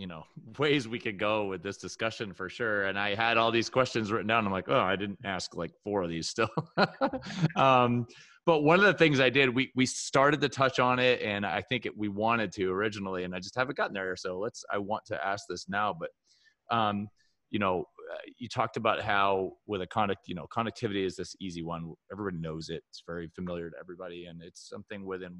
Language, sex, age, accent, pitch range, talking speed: English, male, 30-49, American, 90-115 Hz, 230 wpm